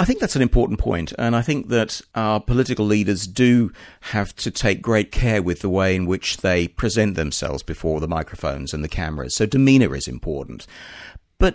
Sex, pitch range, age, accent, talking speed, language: male, 85-110 Hz, 50-69, British, 200 wpm, English